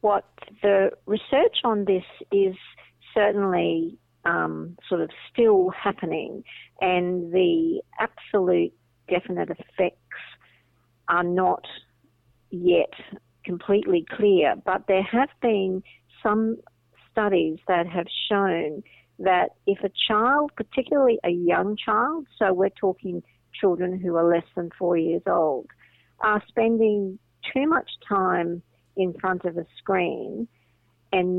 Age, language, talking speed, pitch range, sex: 50-69, Persian, 115 wpm, 170-205 Hz, female